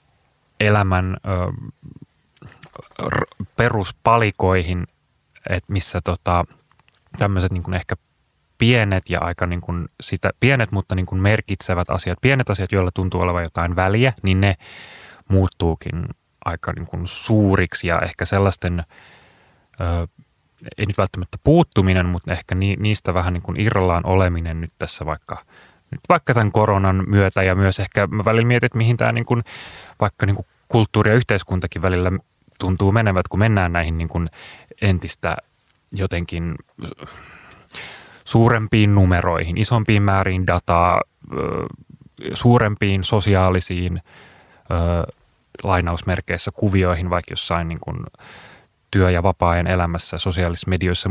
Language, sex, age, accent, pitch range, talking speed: Finnish, male, 20-39, native, 90-105 Hz, 115 wpm